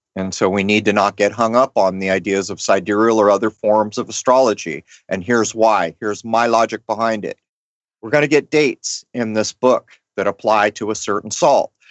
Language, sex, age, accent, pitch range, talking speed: English, male, 40-59, American, 105-130 Hz, 205 wpm